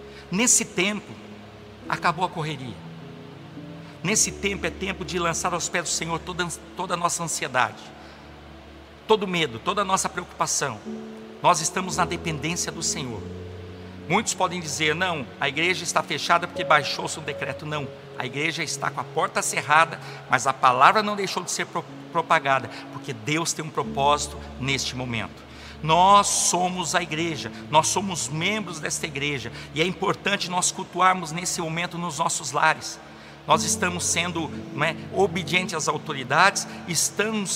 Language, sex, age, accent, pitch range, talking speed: Portuguese, male, 60-79, Brazilian, 140-180 Hz, 150 wpm